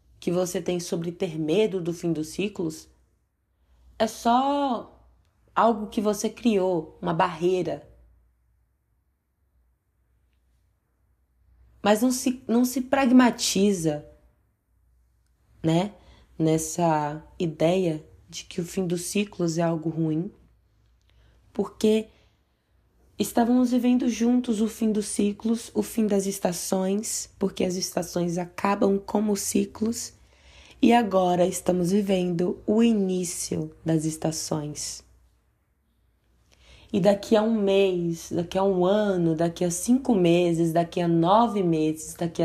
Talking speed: 110 wpm